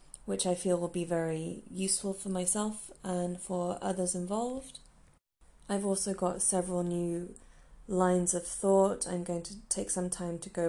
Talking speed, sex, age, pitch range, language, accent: 165 wpm, female, 30-49, 170-195 Hz, English, British